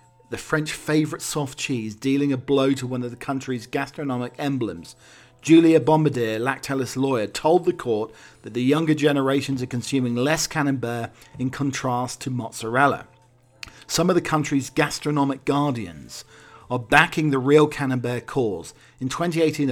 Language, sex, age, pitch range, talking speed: English, male, 40-59, 125-150 Hz, 145 wpm